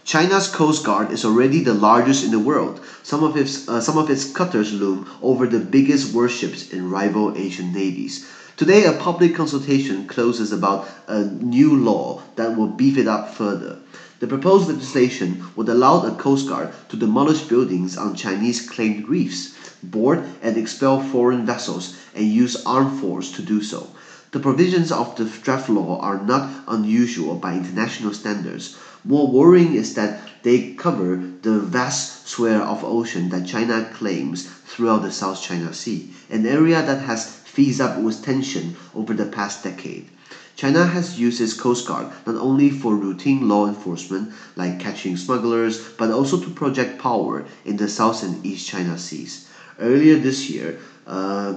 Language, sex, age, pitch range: Chinese, male, 30-49, 100-135 Hz